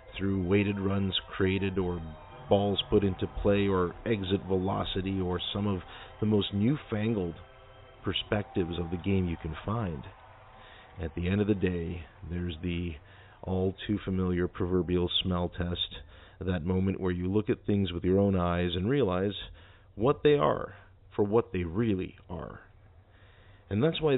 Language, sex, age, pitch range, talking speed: English, male, 40-59, 90-105 Hz, 155 wpm